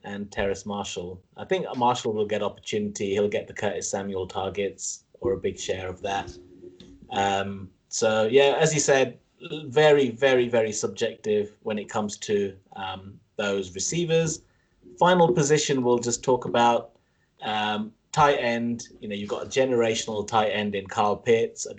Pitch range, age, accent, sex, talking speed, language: 100-140 Hz, 30-49, British, male, 170 wpm, English